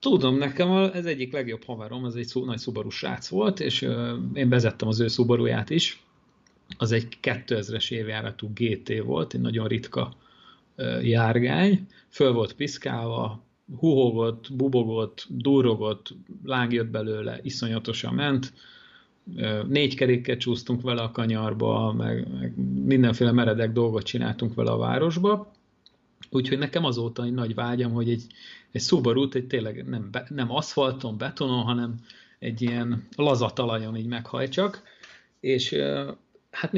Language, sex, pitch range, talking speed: Hungarian, male, 115-135 Hz, 130 wpm